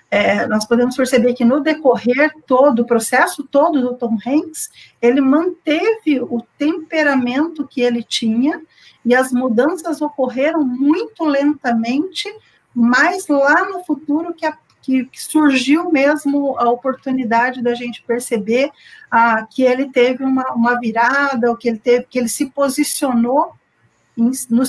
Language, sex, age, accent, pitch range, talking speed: Portuguese, female, 50-69, Brazilian, 230-285 Hz, 145 wpm